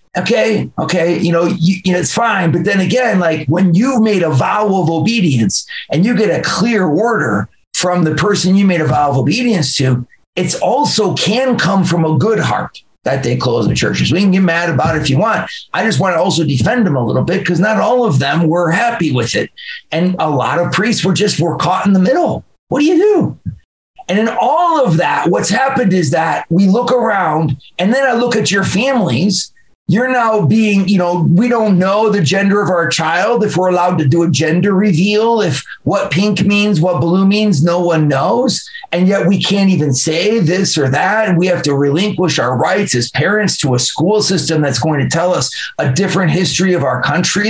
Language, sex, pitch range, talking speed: English, male, 160-205 Hz, 220 wpm